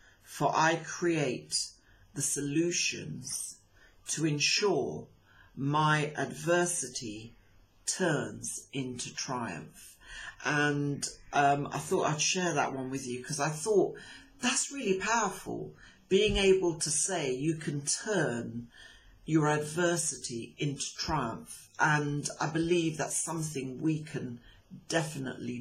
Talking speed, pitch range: 110 wpm, 125-170 Hz